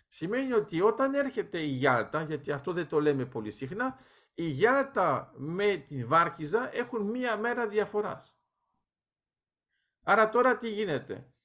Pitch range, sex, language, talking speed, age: 145-220 Hz, male, Greek, 135 wpm, 50-69